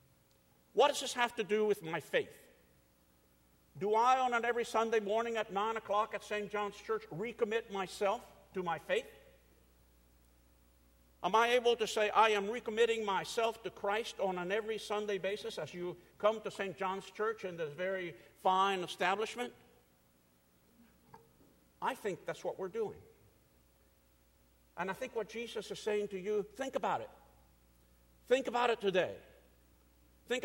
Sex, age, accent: male, 50-69, American